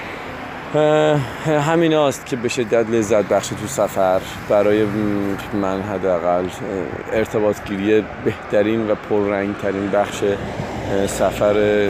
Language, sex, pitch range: Persian, male, 100-115 Hz